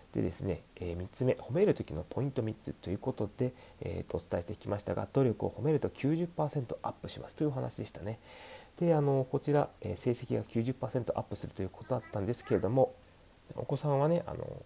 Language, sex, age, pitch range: Japanese, male, 30-49, 90-135 Hz